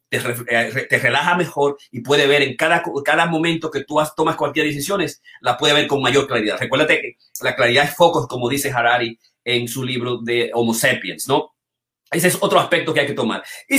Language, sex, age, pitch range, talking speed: Spanish, male, 30-49, 140-185 Hz, 215 wpm